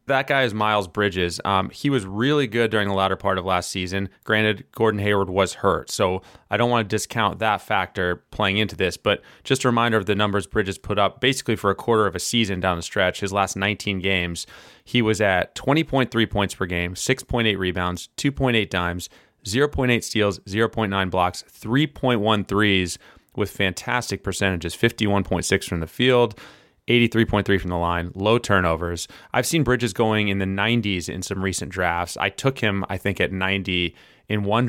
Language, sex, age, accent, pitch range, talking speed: English, male, 20-39, American, 95-115 Hz, 185 wpm